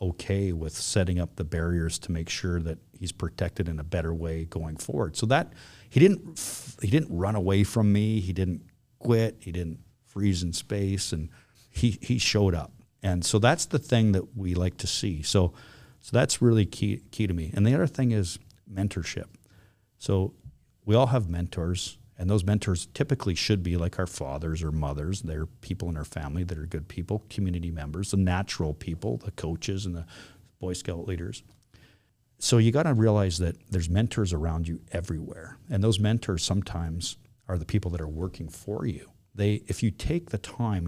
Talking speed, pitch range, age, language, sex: 190 wpm, 85-110 Hz, 50-69, English, male